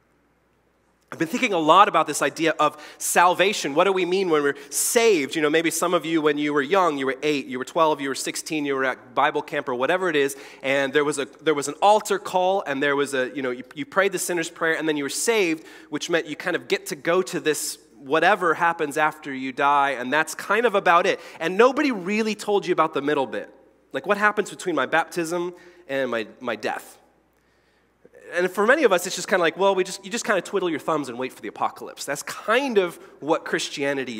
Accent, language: American, English